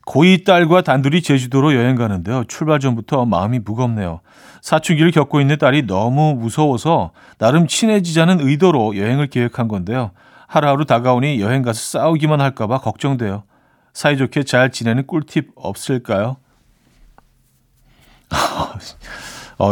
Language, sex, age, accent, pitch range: Korean, male, 40-59, native, 115-155 Hz